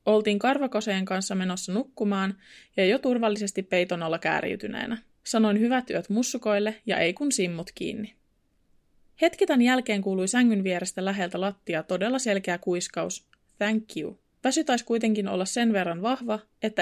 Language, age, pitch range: Finnish, 20-39, 195-245 Hz